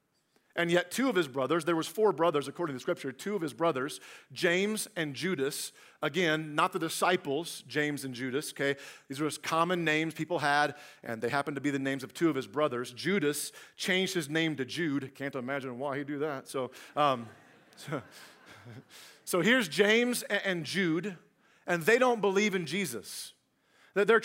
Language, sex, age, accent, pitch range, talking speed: English, male, 40-59, American, 140-195 Hz, 190 wpm